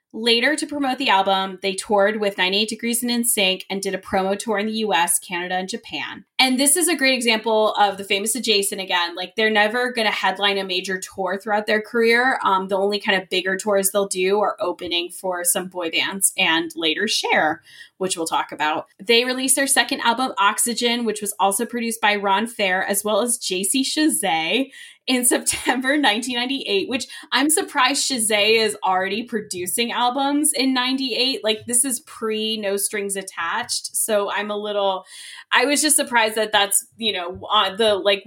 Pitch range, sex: 190-235 Hz, female